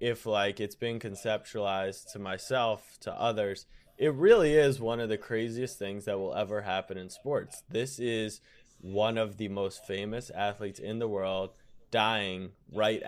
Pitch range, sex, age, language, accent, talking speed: 100-125 Hz, male, 20-39, English, American, 165 wpm